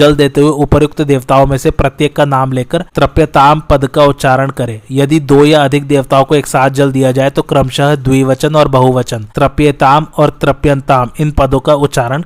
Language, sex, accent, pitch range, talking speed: Hindi, male, native, 135-150 Hz, 165 wpm